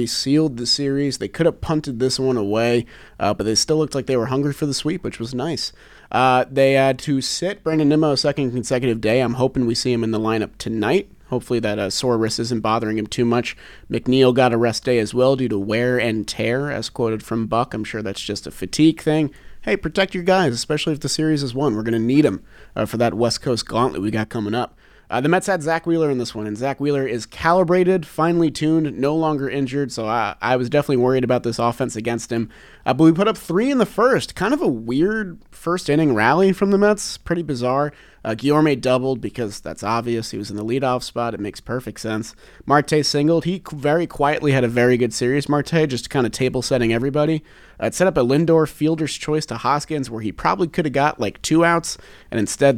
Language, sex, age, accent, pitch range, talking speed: English, male, 30-49, American, 115-150 Hz, 235 wpm